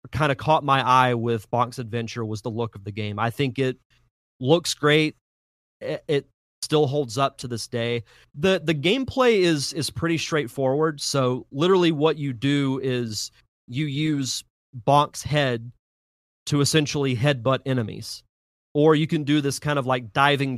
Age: 30-49